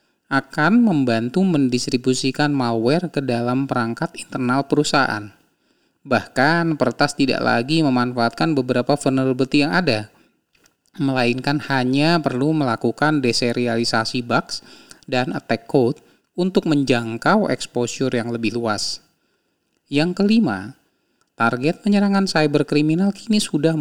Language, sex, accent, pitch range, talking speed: Indonesian, male, native, 120-155 Hz, 105 wpm